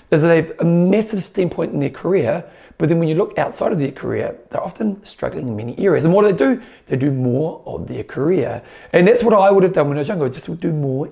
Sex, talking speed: male, 270 wpm